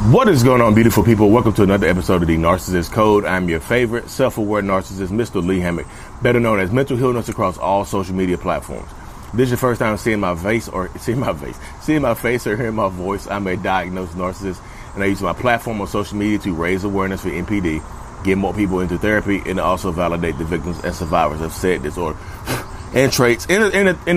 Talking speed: 215 wpm